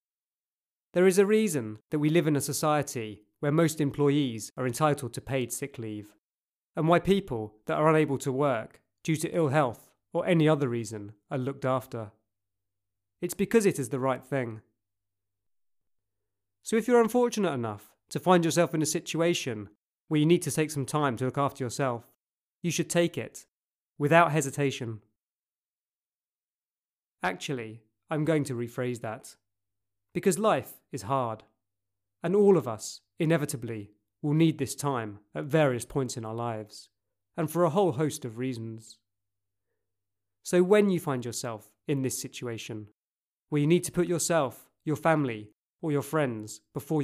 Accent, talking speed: British, 160 wpm